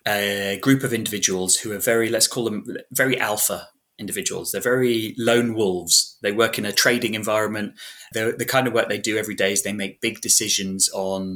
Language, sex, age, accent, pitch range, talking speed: English, male, 20-39, British, 100-130 Hz, 200 wpm